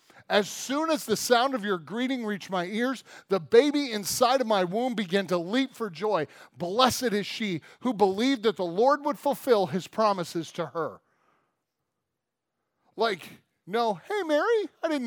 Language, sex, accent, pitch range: English, male, American, 170-230 Hz